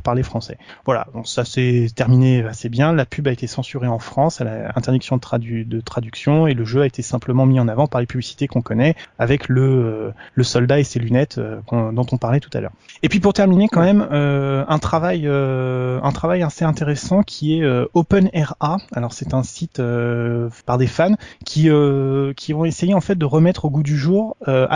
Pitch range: 130-160 Hz